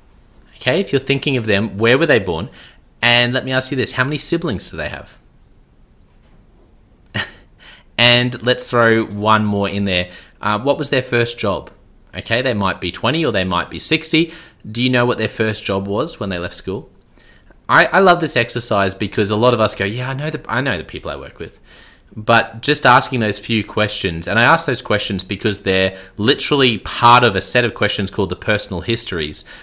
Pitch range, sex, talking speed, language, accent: 100-125 Hz, male, 205 wpm, English, Australian